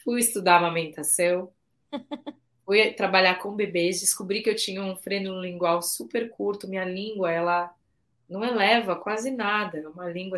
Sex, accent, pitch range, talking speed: female, Brazilian, 155-205 Hz, 150 wpm